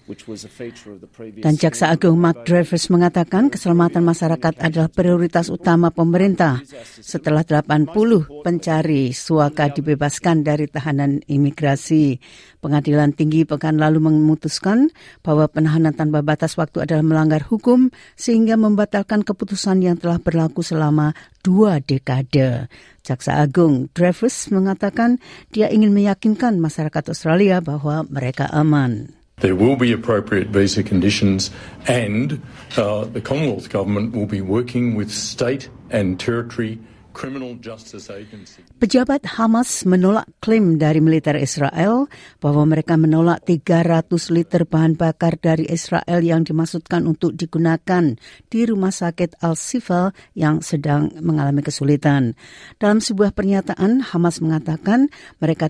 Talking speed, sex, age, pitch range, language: 115 wpm, female, 50-69, 145-180 Hz, Indonesian